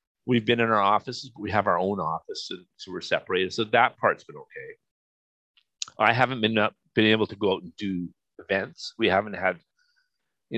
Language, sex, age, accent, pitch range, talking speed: English, male, 40-59, American, 100-125 Hz, 205 wpm